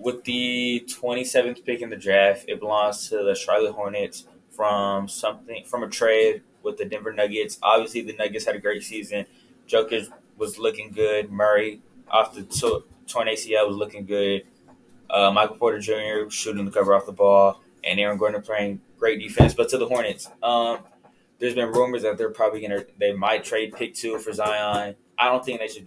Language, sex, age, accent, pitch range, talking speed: English, male, 10-29, American, 105-120 Hz, 190 wpm